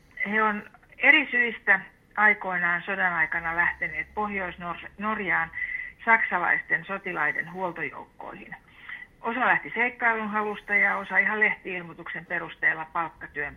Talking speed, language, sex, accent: 95 wpm, Finnish, female, native